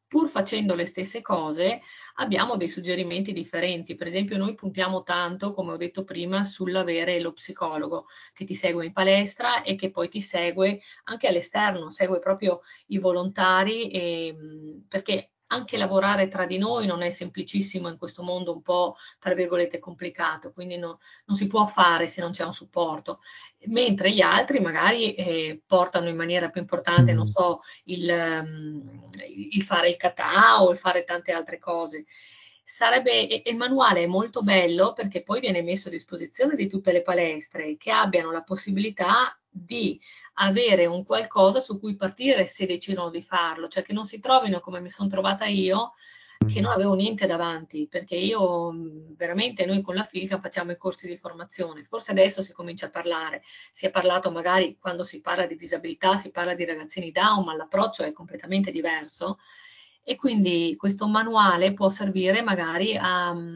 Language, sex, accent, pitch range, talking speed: Italian, female, native, 175-195 Hz, 170 wpm